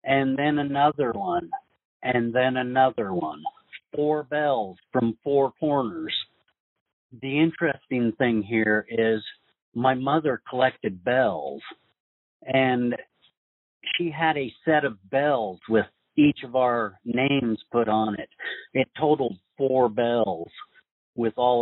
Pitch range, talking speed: 110-140 Hz, 120 wpm